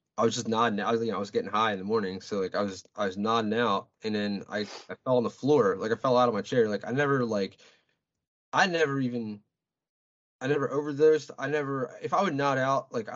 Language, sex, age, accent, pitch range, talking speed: English, male, 20-39, American, 100-130 Hz, 250 wpm